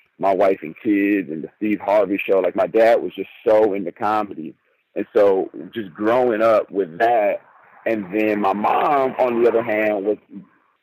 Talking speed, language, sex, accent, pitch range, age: 185 wpm, English, male, American, 100-130 Hz, 40-59